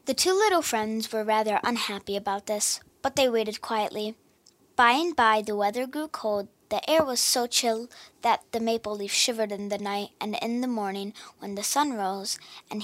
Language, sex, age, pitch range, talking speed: English, female, 10-29, 210-255 Hz, 195 wpm